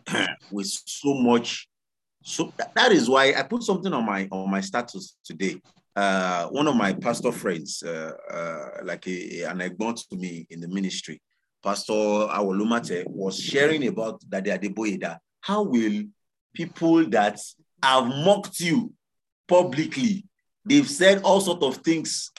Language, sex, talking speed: English, male, 140 wpm